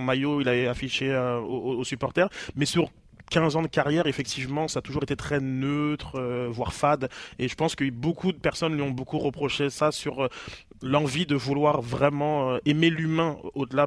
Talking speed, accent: 200 wpm, French